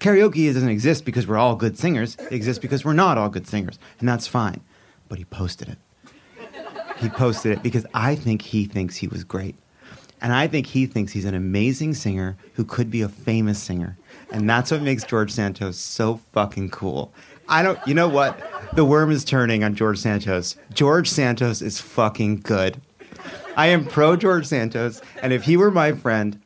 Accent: American